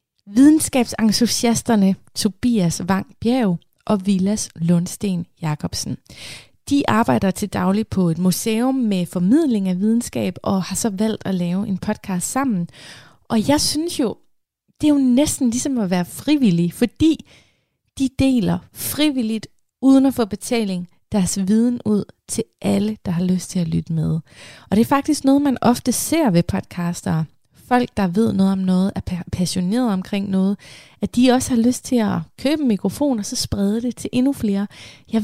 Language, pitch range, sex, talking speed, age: Danish, 180-235 Hz, female, 165 wpm, 30-49